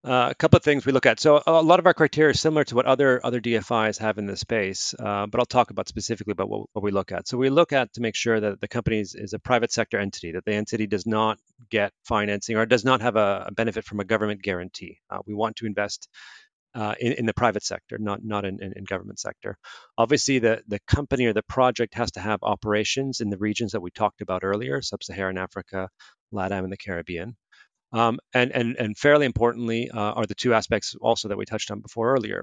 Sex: male